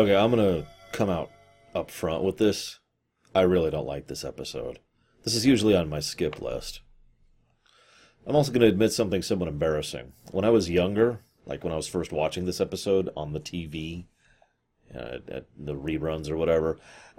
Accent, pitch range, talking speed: American, 90-125 Hz, 180 wpm